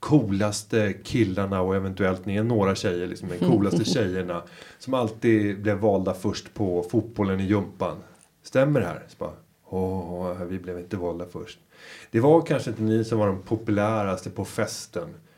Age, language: 30-49, Swedish